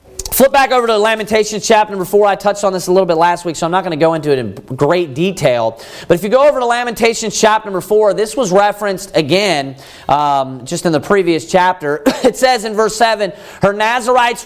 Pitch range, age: 175-235 Hz, 40-59